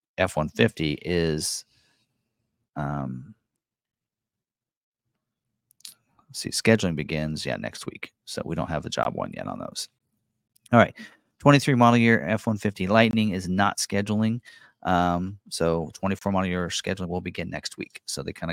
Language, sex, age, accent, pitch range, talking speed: English, male, 40-59, American, 85-110 Hz, 140 wpm